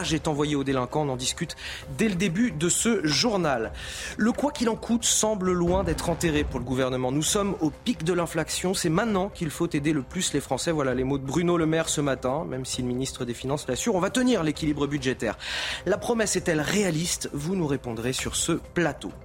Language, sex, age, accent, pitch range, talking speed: French, male, 30-49, French, 135-180 Hz, 220 wpm